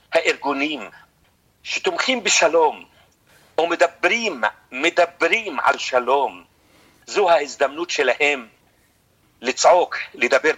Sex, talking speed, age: male, 70 wpm, 50-69